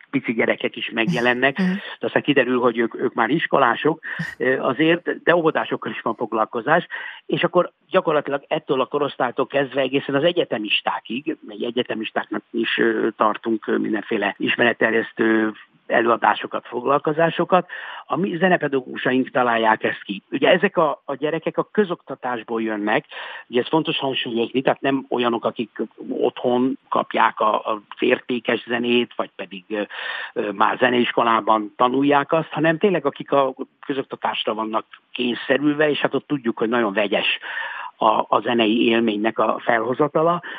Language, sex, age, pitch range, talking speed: Hungarian, male, 60-79, 120-160 Hz, 135 wpm